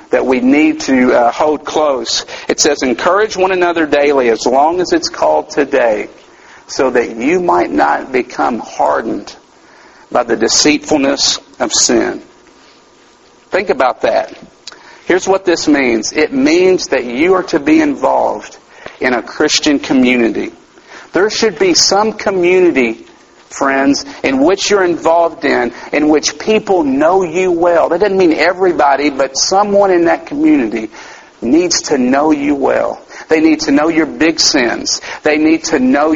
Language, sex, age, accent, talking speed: English, male, 50-69, American, 155 wpm